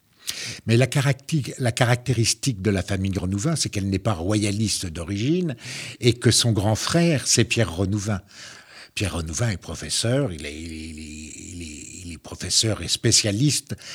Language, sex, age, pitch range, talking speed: French, male, 60-79, 95-120 Hz, 165 wpm